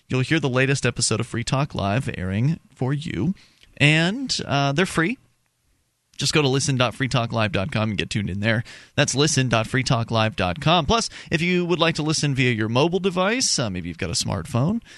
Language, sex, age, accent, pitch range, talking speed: English, male, 30-49, American, 115-155 Hz, 175 wpm